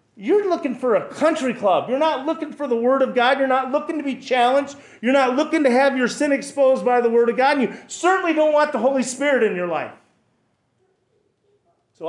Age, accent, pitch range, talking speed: 40-59, American, 155-240 Hz, 225 wpm